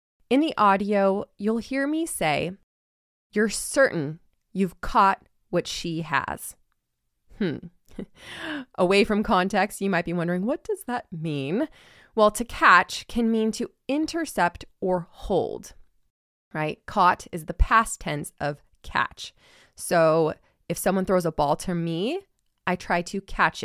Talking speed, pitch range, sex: 140 wpm, 170-220 Hz, female